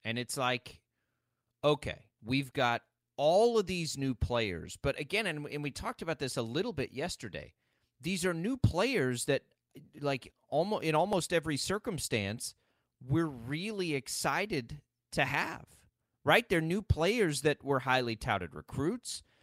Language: English